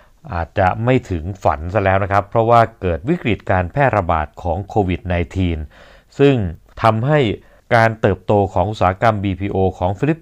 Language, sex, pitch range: Thai, male, 90-120 Hz